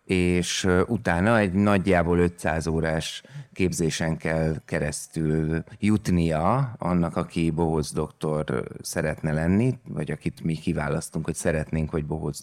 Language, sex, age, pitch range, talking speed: Hungarian, male, 30-49, 80-95 Hz, 115 wpm